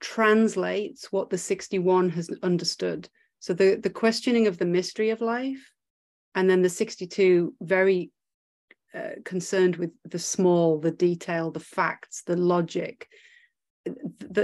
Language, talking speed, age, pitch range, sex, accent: English, 135 wpm, 30-49, 175-215 Hz, female, British